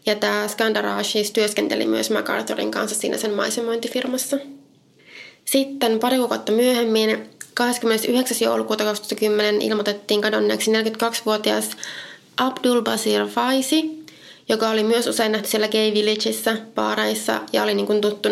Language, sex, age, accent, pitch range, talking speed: Finnish, female, 20-39, native, 200-235 Hz, 120 wpm